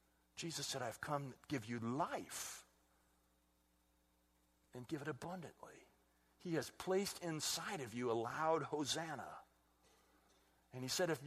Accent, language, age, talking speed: American, English, 60-79, 135 wpm